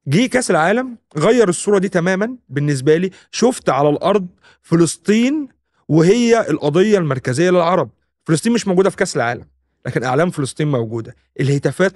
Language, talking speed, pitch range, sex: Arabic, 140 wpm, 135-190 Hz, male